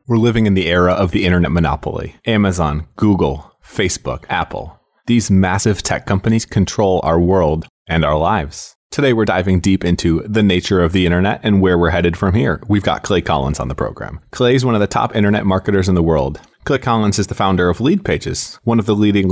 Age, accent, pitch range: 30-49, American, 85-105 Hz